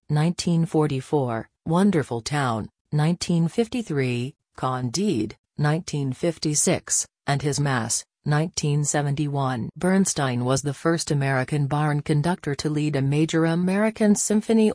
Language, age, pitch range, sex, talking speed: English, 40-59, 135-165 Hz, female, 95 wpm